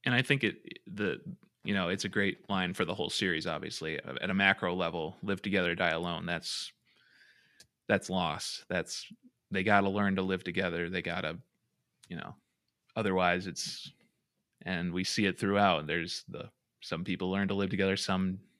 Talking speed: 175 wpm